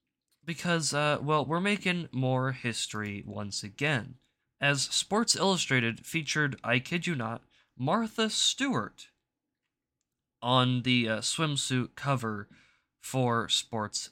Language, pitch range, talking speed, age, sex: English, 115-155 Hz, 110 wpm, 20-39, male